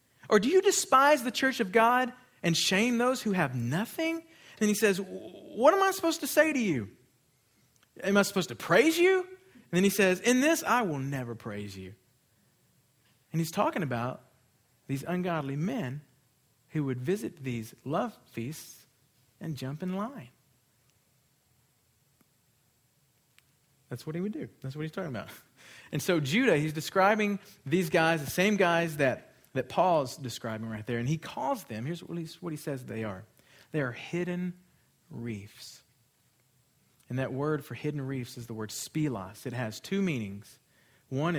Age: 40-59